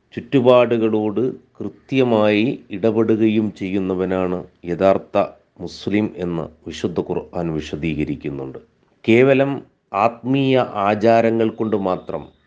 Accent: native